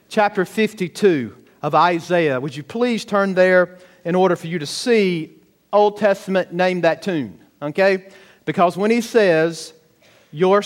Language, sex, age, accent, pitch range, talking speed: English, male, 50-69, American, 165-205 Hz, 145 wpm